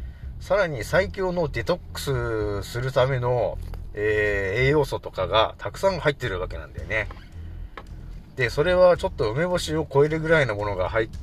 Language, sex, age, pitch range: Japanese, male, 30-49, 95-145 Hz